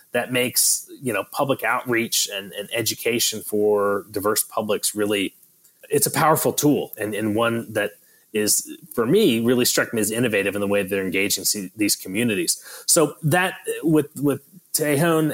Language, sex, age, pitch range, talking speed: English, male, 30-49, 105-140 Hz, 165 wpm